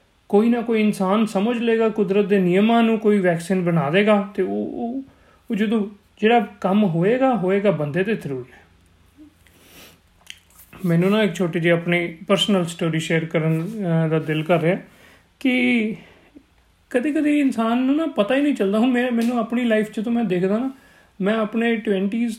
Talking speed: 160 wpm